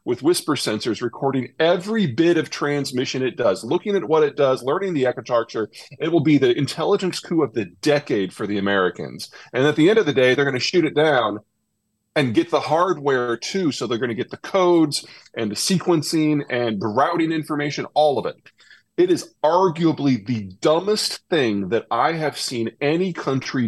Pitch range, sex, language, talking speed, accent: 115-160 Hz, male, English, 195 wpm, American